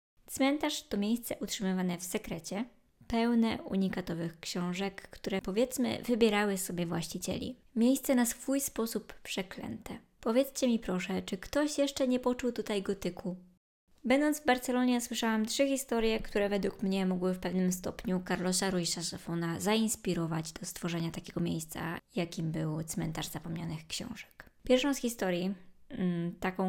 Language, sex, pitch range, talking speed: Polish, male, 175-230 Hz, 135 wpm